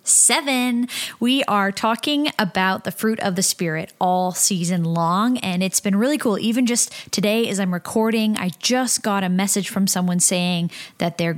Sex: female